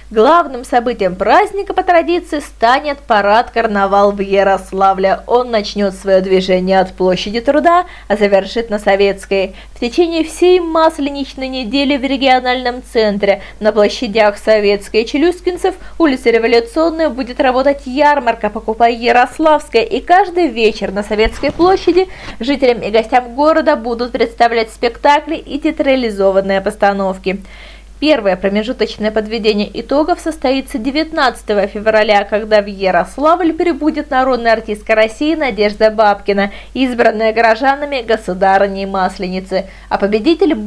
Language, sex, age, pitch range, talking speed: Russian, female, 20-39, 205-285 Hz, 115 wpm